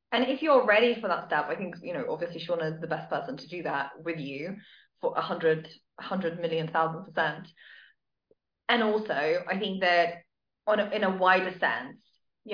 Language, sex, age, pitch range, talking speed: English, female, 20-39, 180-245 Hz, 190 wpm